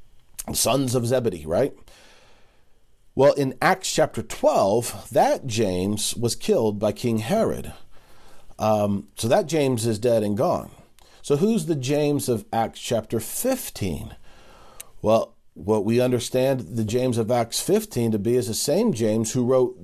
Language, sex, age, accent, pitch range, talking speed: English, male, 40-59, American, 100-120 Hz, 150 wpm